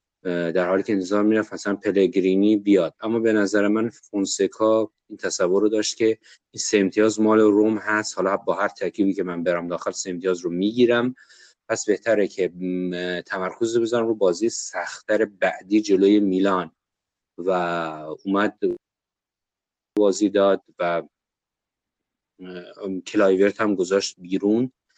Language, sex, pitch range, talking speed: Persian, male, 95-110 Hz, 130 wpm